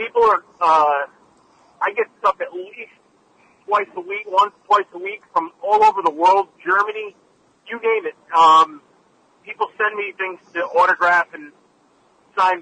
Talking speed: 155 wpm